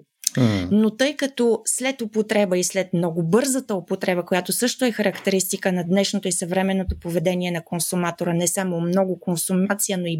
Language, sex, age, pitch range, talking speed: Bulgarian, female, 20-39, 180-205 Hz, 160 wpm